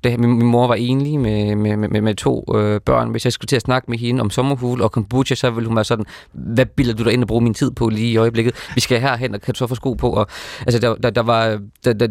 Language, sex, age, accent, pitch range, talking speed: Danish, male, 20-39, native, 110-125 Hz, 290 wpm